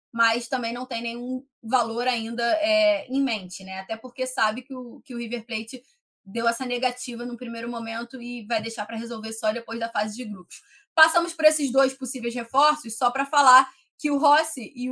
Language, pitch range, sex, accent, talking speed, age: Portuguese, 220-260 Hz, female, Brazilian, 195 wpm, 20-39